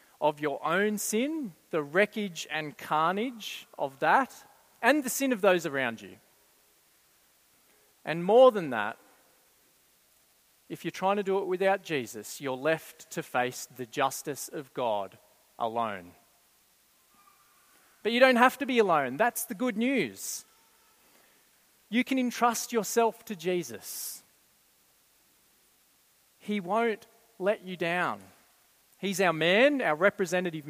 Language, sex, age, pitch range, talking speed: English, male, 40-59, 160-220 Hz, 125 wpm